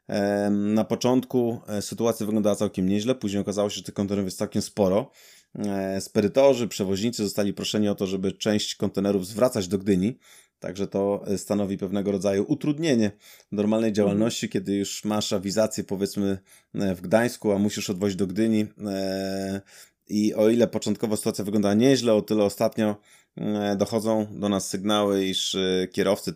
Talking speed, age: 145 wpm, 20-39